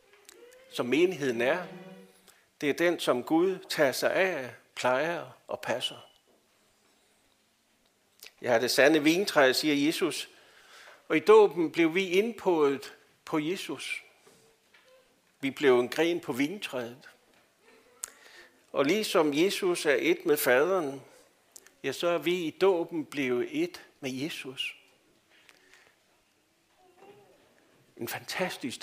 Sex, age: male, 60-79